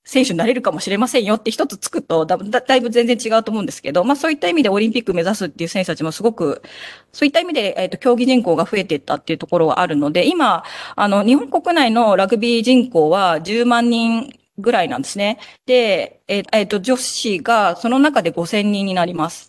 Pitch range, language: 185-255 Hz, Japanese